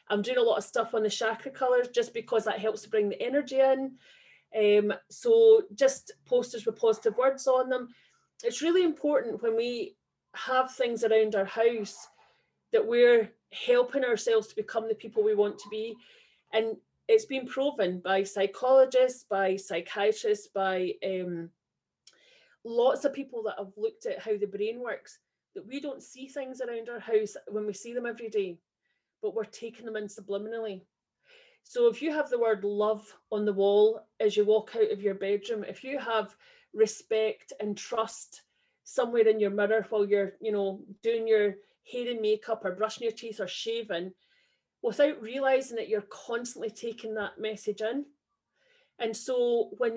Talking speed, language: 170 wpm, English